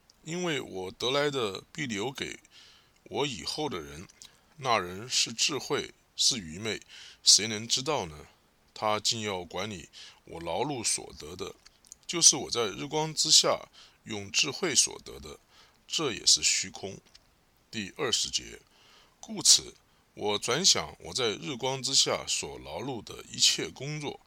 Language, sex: English, male